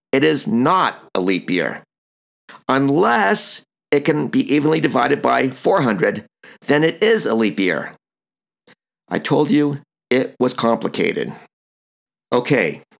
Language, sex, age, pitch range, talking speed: English, male, 50-69, 115-155 Hz, 125 wpm